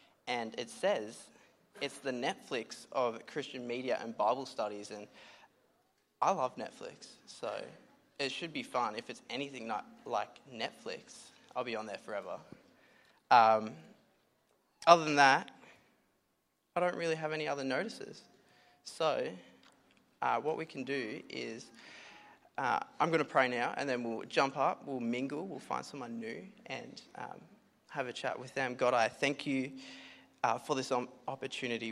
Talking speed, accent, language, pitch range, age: 150 wpm, Australian, English, 110-135 Hz, 20-39